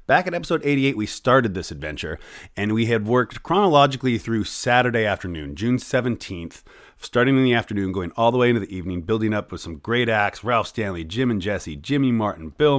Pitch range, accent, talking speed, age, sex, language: 90-130 Hz, American, 200 wpm, 30-49, male, English